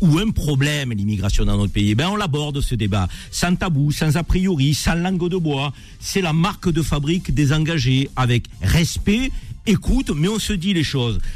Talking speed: 195 wpm